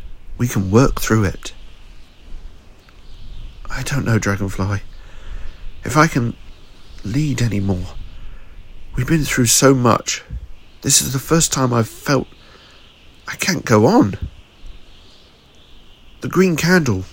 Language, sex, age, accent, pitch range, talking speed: English, male, 50-69, British, 90-135 Hz, 120 wpm